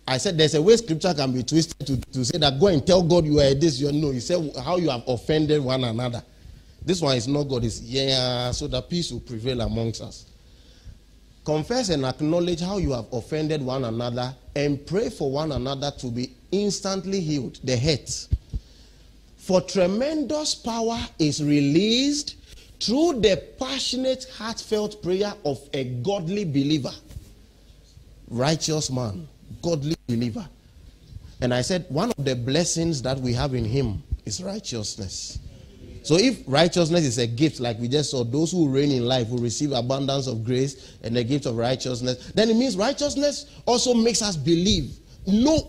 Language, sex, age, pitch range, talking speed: English, male, 40-59, 120-180 Hz, 175 wpm